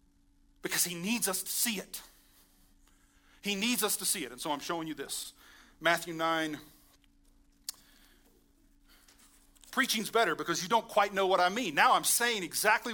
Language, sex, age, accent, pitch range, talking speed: English, male, 40-59, American, 140-225 Hz, 160 wpm